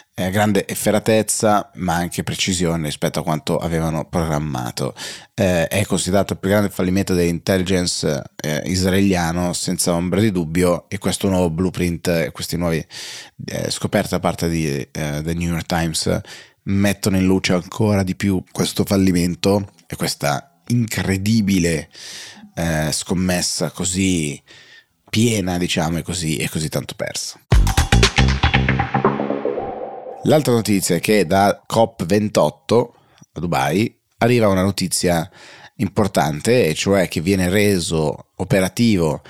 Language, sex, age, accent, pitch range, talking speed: Italian, male, 30-49, native, 85-100 Hz, 125 wpm